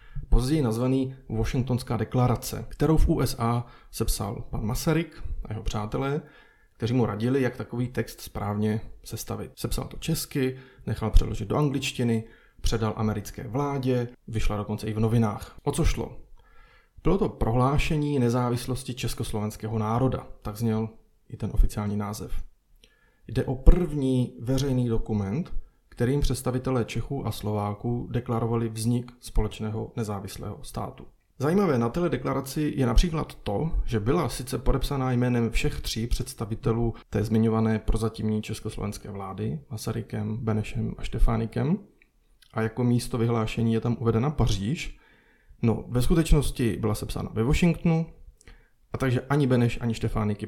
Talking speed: 130 wpm